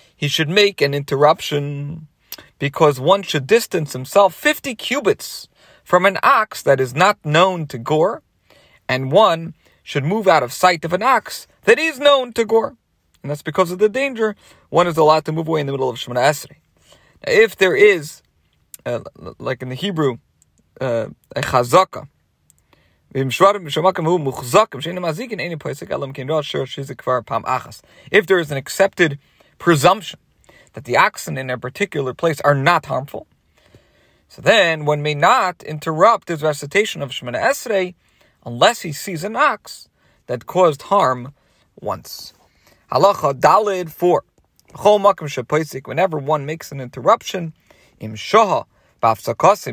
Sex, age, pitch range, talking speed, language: male, 40-59, 140-195 Hz, 135 wpm, English